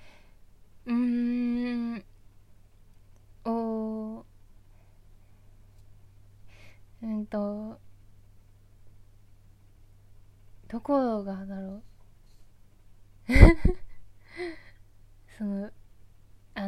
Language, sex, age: Japanese, female, 20-39